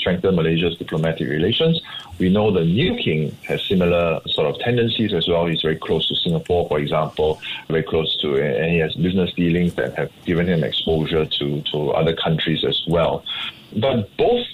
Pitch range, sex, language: 80-95 Hz, male, English